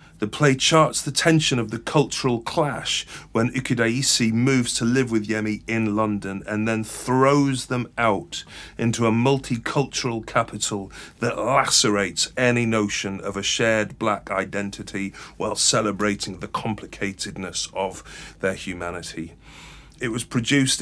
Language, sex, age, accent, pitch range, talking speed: English, male, 40-59, British, 105-125 Hz, 135 wpm